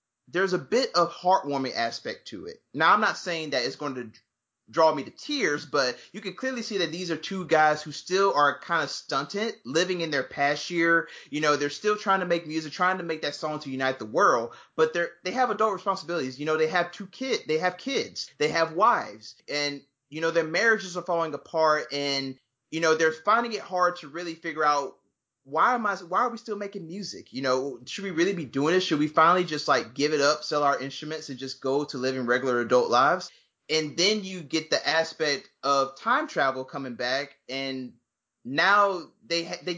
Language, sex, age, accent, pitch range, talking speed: English, male, 30-49, American, 145-190 Hz, 220 wpm